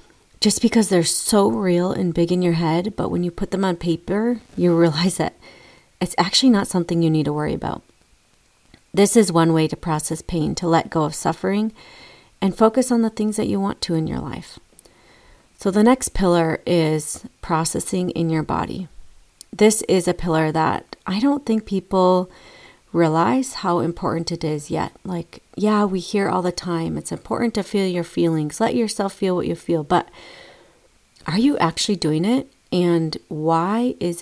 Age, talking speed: 30-49, 185 wpm